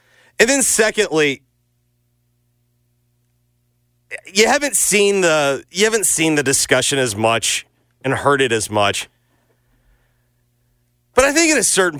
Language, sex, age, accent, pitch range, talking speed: English, male, 30-49, American, 120-185 Hz, 125 wpm